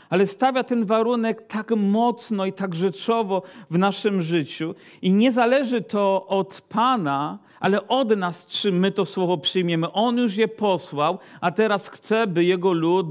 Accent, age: native, 50-69